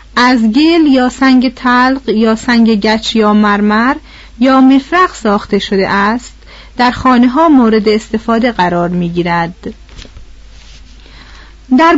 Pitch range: 205-280 Hz